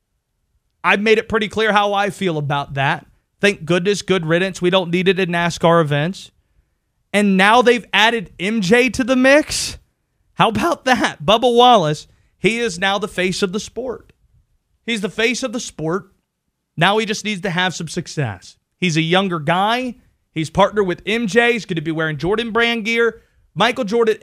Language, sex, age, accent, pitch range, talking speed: English, male, 30-49, American, 165-215 Hz, 185 wpm